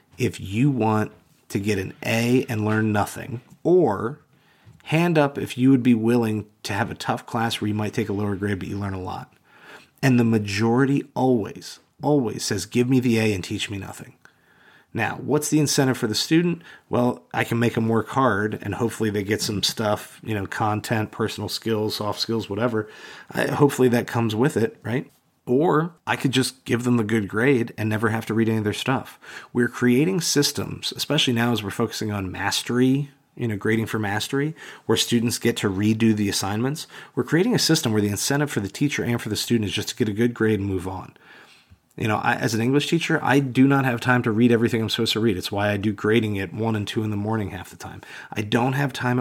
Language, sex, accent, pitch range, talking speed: English, male, American, 105-125 Hz, 225 wpm